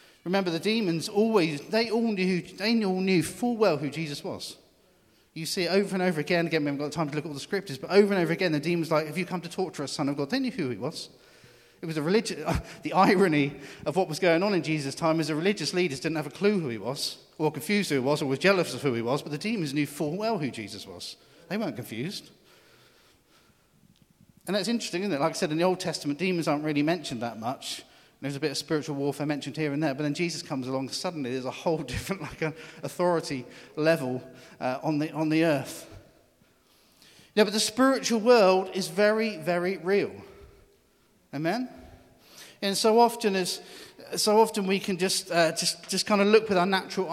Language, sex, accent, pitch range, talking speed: English, male, British, 150-190 Hz, 225 wpm